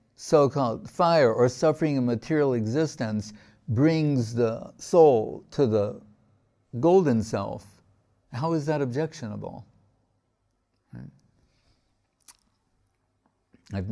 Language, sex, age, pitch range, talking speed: English, male, 60-79, 105-130 Hz, 80 wpm